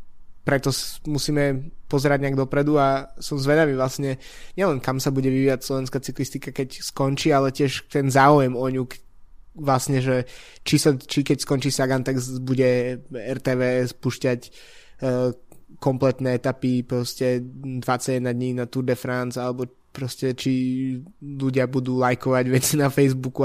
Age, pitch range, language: 20-39, 125-140 Hz, Slovak